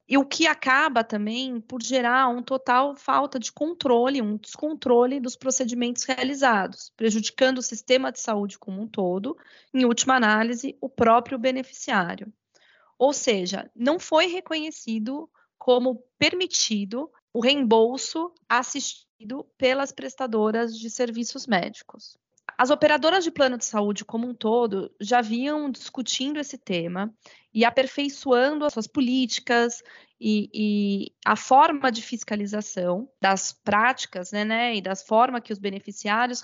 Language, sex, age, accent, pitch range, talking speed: Portuguese, female, 30-49, Brazilian, 215-265 Hz, 135 wpm